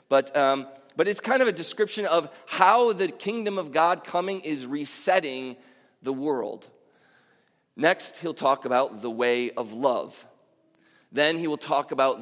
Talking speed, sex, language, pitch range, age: 155 wpm, male, English, 130-185 Hz, 30-49